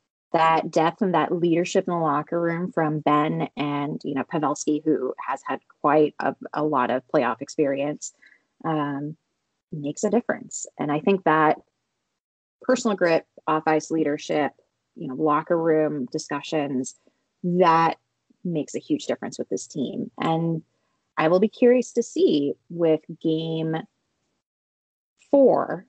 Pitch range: 155-190 Hz